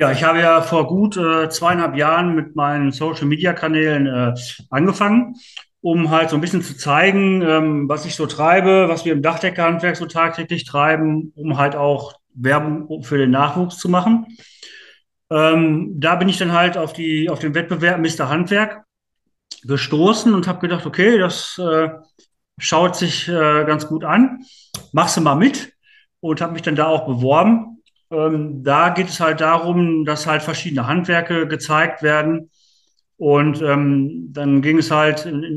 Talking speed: 160 wpm